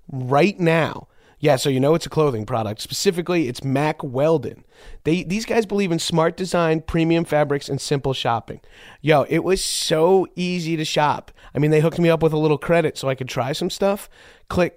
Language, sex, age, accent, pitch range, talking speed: English, male, 30-49, American, 140-175 Hz, 205 wpm